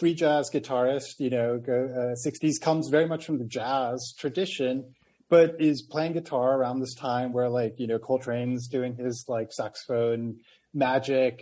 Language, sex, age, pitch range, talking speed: English, male, 30-49, 125-155 Hz, 165 wpm